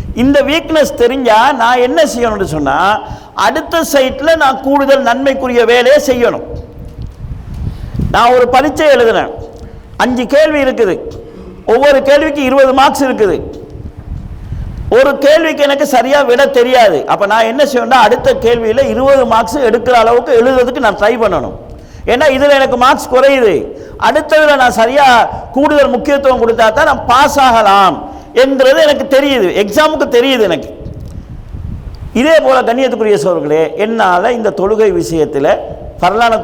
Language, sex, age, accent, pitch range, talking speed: Tamil, male, 50-69, native, 205-280 Hz, 125 wpm